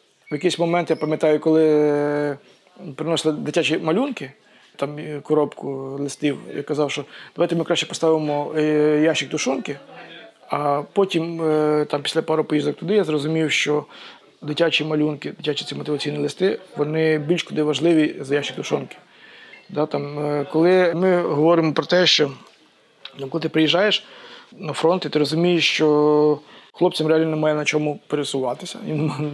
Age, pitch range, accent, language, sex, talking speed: 20-39, 145-165 Hz, native, Ukrainian, male, 140 wpm